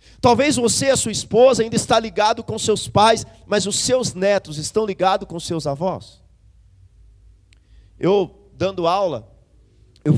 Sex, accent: male, Brazilian